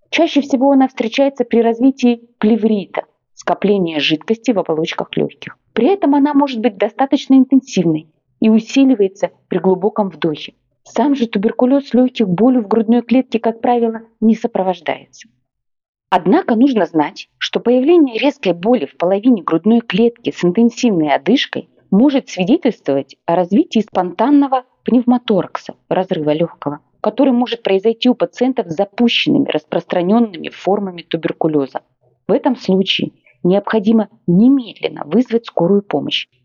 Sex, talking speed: female, 125 wpm